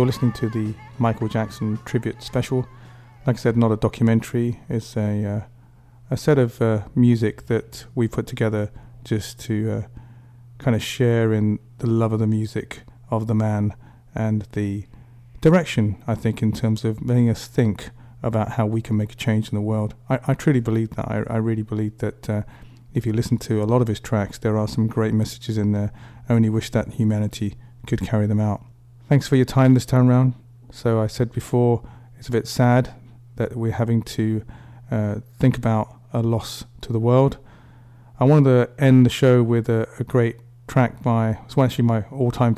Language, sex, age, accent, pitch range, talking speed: English, male, 30-49, British, 110-125 Hz, 195 wpm